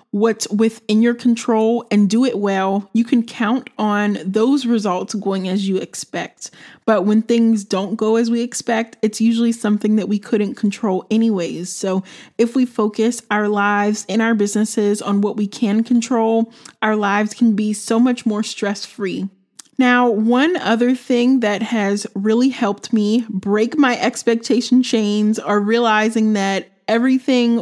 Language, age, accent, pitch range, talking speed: English, 20-39, American, 205-235 Hz, 160 wpm